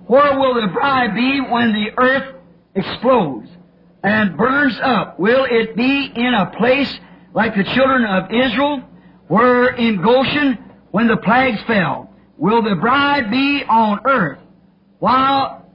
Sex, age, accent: male, 50-69, American